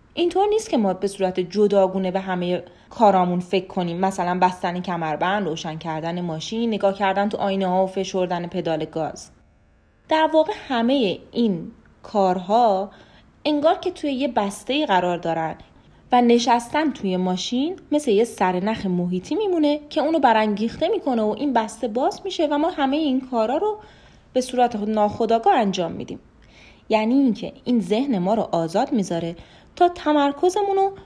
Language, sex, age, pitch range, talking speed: Persian, female, 30-49, 185-280 Hz, 150 wpm